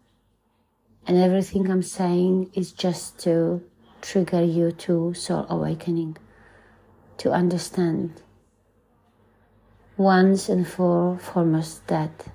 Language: English